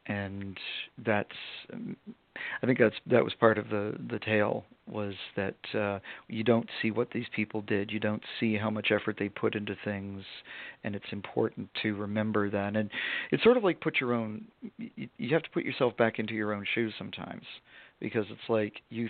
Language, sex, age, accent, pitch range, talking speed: English, male, 50-69, American, 105-120 Hz, 200 wpm